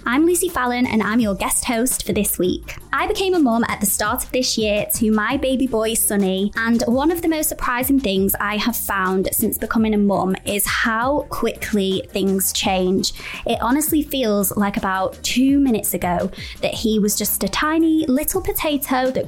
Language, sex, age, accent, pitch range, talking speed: English, female, 20-39, British, 195-245 Hz, 195 wpm